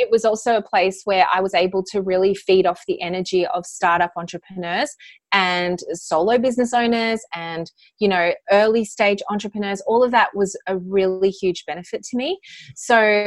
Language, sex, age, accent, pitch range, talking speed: English, female, 20-39, Australian, 180-225 Hz, 175 wpm